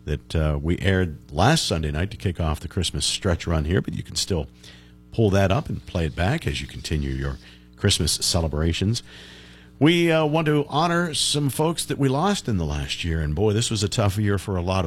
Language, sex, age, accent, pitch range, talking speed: English, male, 50-69, American, 75-95 Hz, 225 wpm